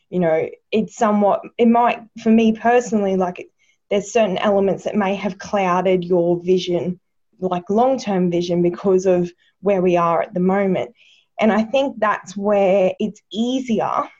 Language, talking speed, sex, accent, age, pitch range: English, 160 wpm, female, Australian, 20-39, 180-215 Hz